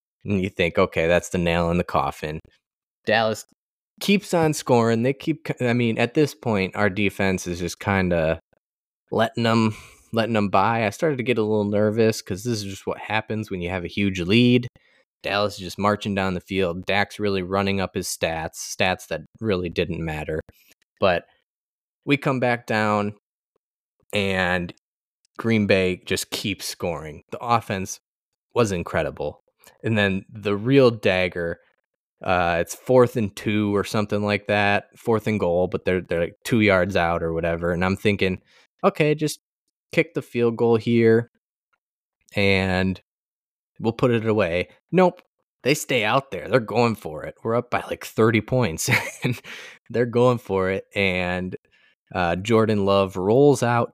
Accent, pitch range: American, 95-120 Hz